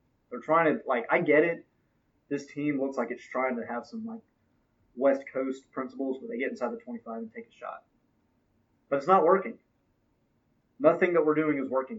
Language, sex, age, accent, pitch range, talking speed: English, male, 20-39, American, 120-165 Hz, 200 wpm